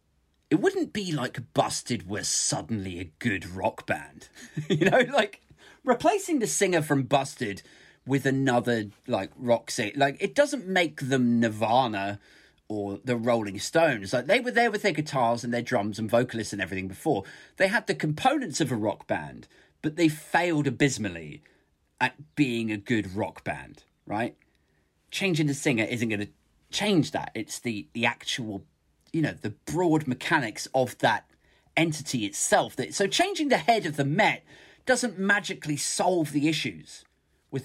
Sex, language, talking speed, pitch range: male, English, 165 wpm, 110-165 Hz